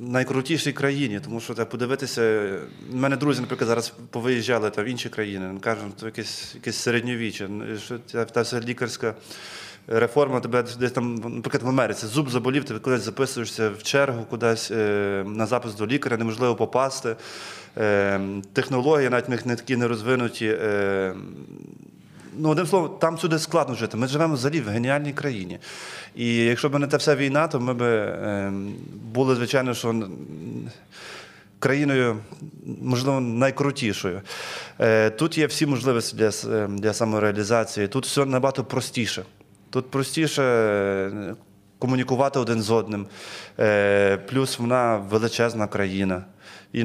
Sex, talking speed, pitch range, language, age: male, 135 wpm, 105-130 Hz, Ukrainian, 20-39